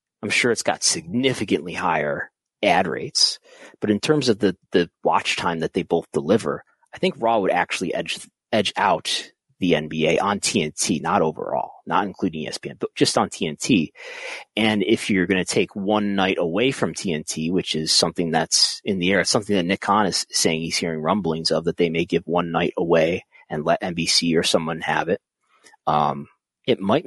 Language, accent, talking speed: English, American, 195 wpm